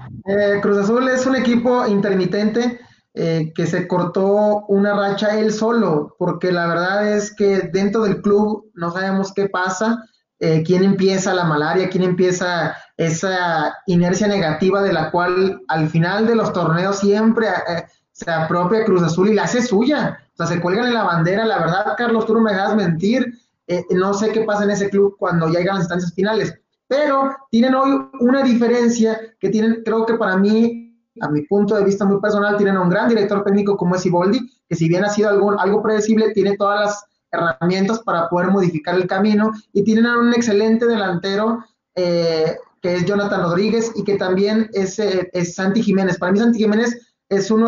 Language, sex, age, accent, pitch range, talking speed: English, male, 20-39, Mexican, 180-215 Hz, 190 wpm